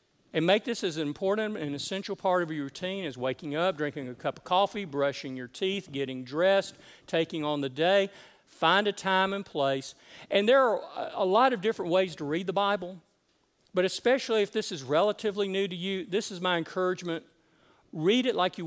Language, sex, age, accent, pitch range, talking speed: English, male, 50-69, American, 150-190 Hz, 200 wpm